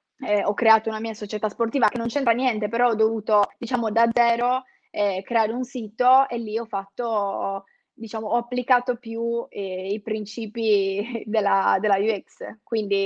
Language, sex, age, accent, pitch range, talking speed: Italian, female, 20-39, native, 210-250 Hz, 165 wpm